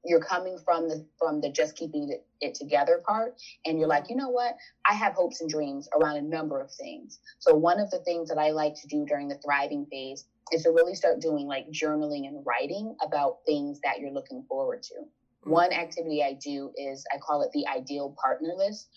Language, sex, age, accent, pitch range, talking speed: English, female, 20-39, American, 145-245 Hz, 220 wpm